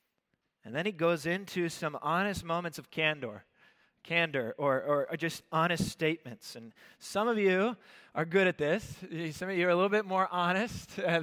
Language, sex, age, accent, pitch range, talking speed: English, male, 20-39, American, 155-195 Hz, 185 wpm